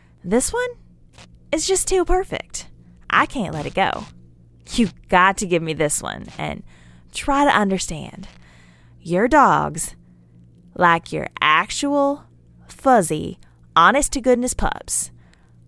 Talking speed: 115 wpm